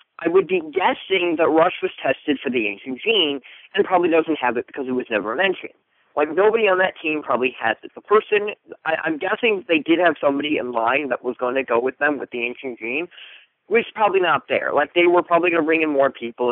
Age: 40-59